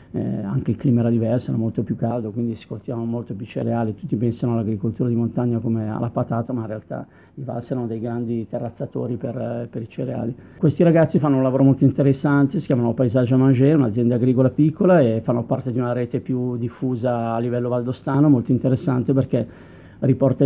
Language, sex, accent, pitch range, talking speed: Italian, male, native, 120-135 Hz, 195 wpm